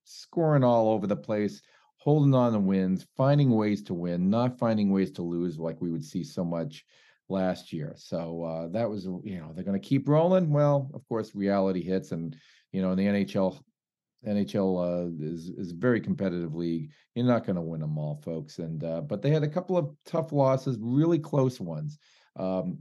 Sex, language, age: male, English, 40-59